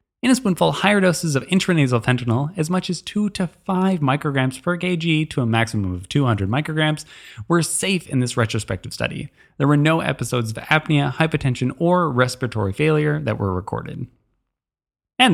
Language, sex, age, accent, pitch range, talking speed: English, male, 20-39, American, 120-165 Hz, 170 wpm